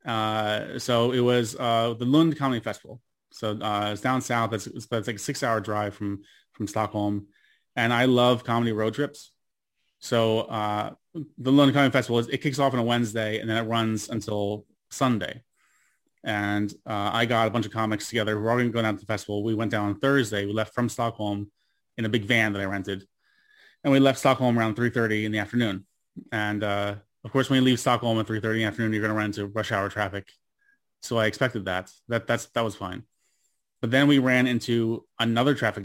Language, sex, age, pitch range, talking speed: English, male, 30-49, 105-125 Hz, 220 wpm